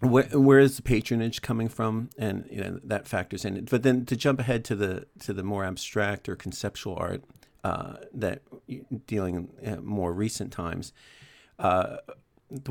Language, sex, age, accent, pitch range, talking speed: English, male, 50-69, American, 100-120 Hz, 165 wpm